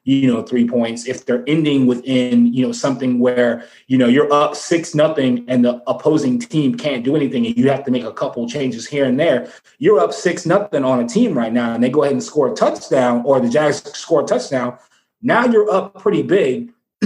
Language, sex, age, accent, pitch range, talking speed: English, male, 30-49, American, 130-180 Hz, 225 wpm